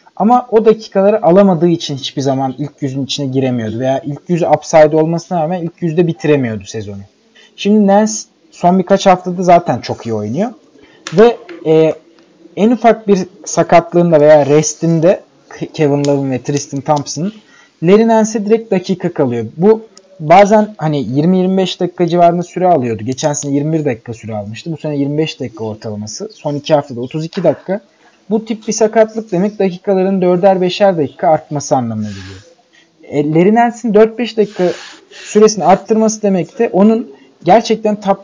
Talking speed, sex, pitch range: 145 wpm, male, 145-195 Hz